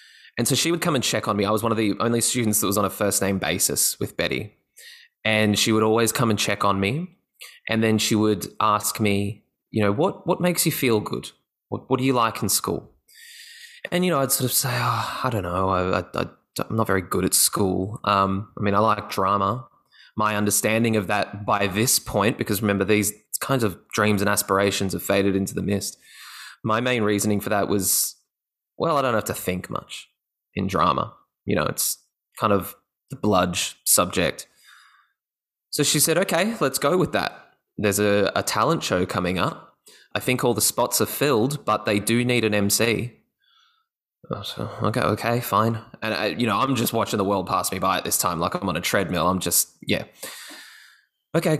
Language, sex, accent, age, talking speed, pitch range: English, male, Australian, 20-39, 210 wpm, 100-125 Hz